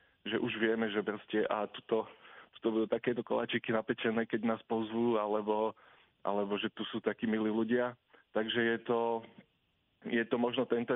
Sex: male